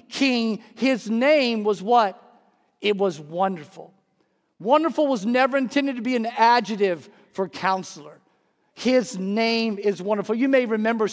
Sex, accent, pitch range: male, American, 205-250 Hz